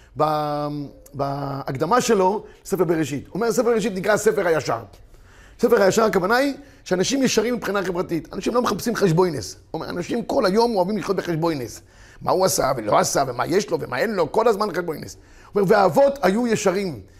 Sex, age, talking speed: male, 30-49, 175 wpm